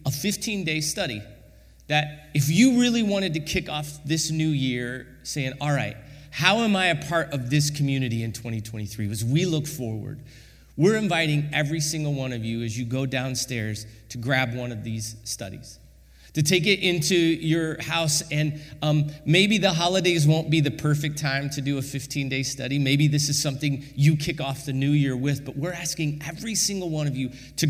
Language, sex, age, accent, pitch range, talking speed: English, male, 30-49, American, 135-175 Hz, 195 wpm